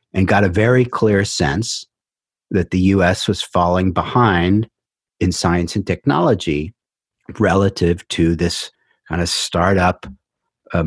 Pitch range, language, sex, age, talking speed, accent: 85-105 Hz, English, male, 50-69, 125 wpm, American